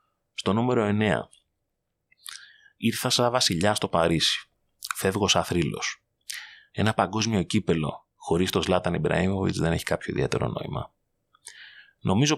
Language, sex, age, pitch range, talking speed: Greek, male, 30-49, 85-105 Hz, 110 wpm